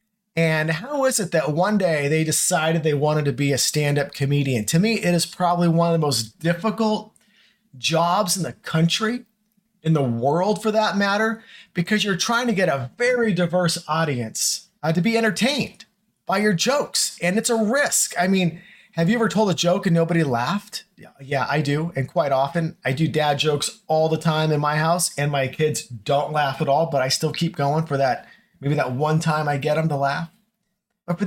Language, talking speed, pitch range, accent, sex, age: English, 210 wpm, 150-205 Hz, American, male, 30-49